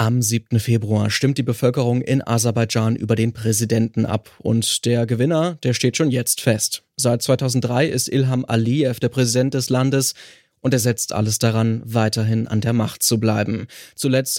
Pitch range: 115-130 Hz